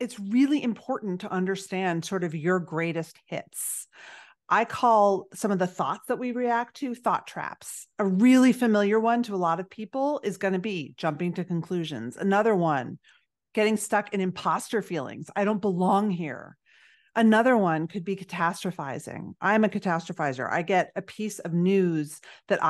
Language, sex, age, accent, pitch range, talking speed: English, female, 40-59, American, 170-225 Hz, 170 wpm